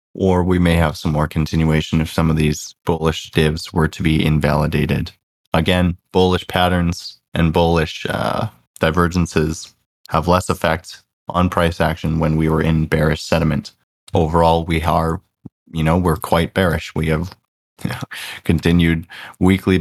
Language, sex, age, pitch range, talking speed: English, male, 20-39, 80-95 Hz, 145 wpm